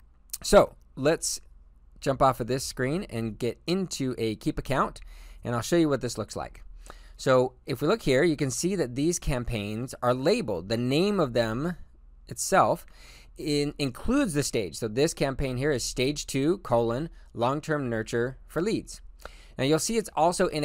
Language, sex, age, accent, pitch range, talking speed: English, male, 20-39, American, 110-150 Hz, 175 wpm